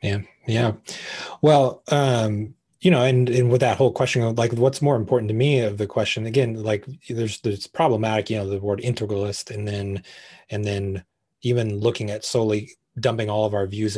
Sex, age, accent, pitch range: male, 30-49, American, 105-130 Hz